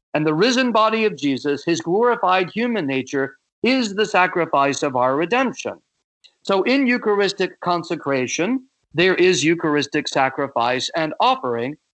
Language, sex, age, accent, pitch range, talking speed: English, male, 50-69, American, 150-215 Hz, 130 wpm